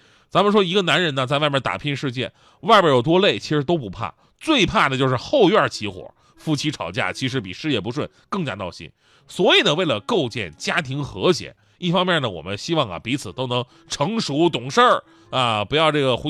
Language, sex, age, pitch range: Chinese, male, 30-49, 120-195 Hz